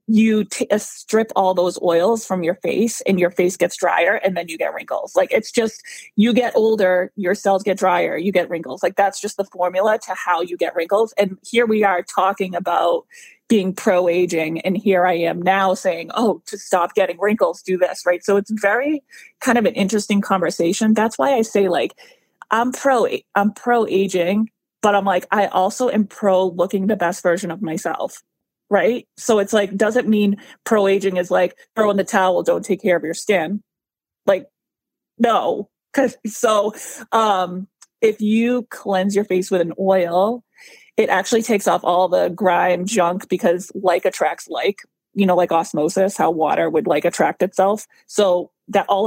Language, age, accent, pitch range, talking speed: English, 30-49, American, 180-215 Hz, 185 wpm